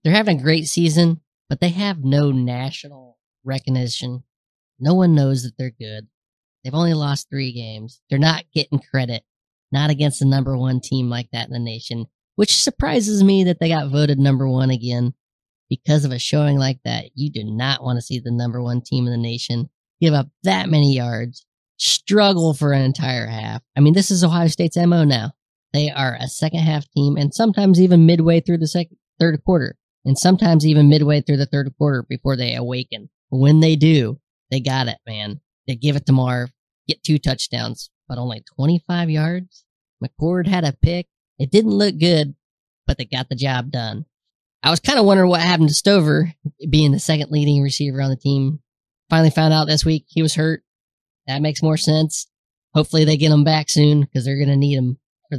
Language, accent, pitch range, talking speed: English, American, 130-160 Hz, 200 wpm